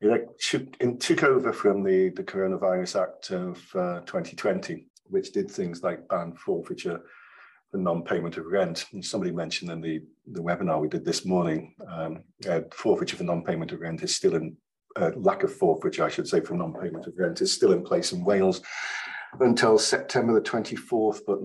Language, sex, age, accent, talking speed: English, male, 50-69, British, 185 wpm